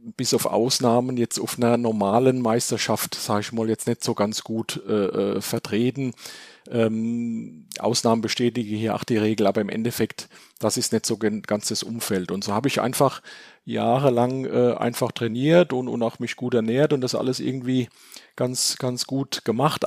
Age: 40-59